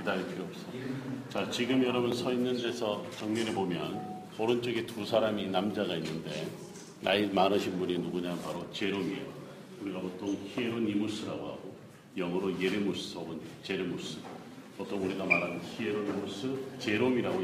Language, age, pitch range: Korean, 40-59, 100-125 Hz